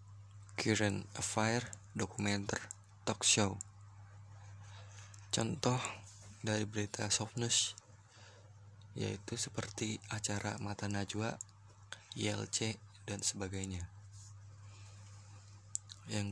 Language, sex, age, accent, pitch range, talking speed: Indonesian, male, 20-39, native, 100-110 Hz, 65 wpm